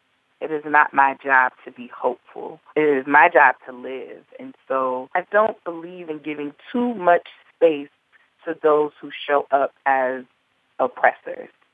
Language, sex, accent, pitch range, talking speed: English, female, American, 135-170 Hz, 160 wpm